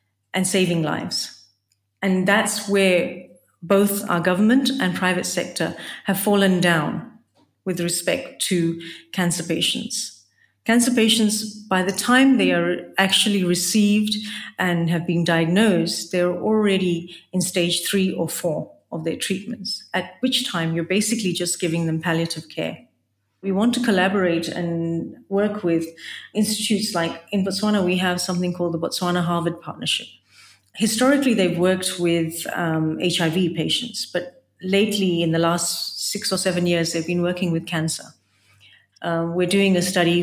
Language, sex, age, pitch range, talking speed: English, female, 40-59, 170-200 Hz, 145 wpm